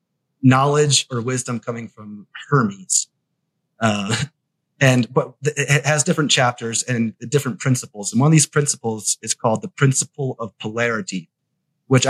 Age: 30-49